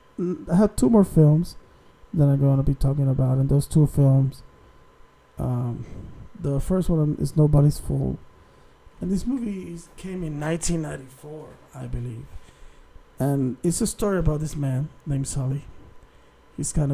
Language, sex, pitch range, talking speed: English, male, 135-155 Hz, 150 wpm